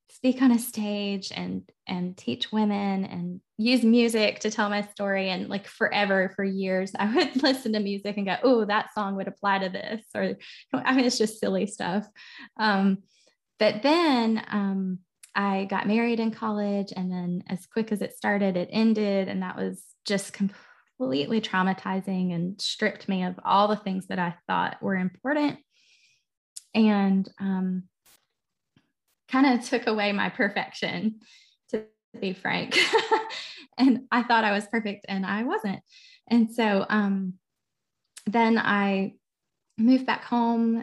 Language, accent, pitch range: English, American, 195-230 Hz